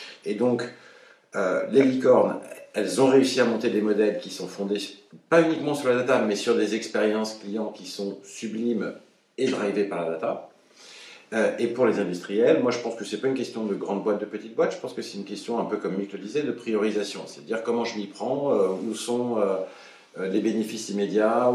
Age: 50-69